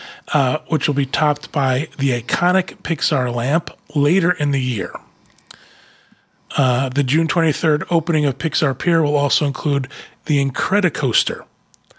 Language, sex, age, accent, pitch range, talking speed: English, male, 30-49, American, 140-170 Hz, 135 wpm